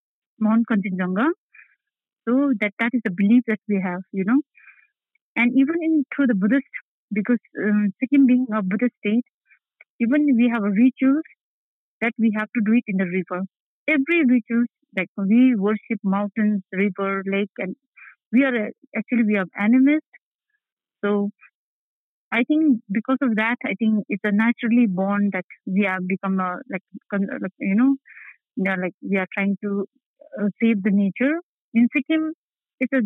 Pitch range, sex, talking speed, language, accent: 200-255 Hz, female, 170 wpm, Telugu, native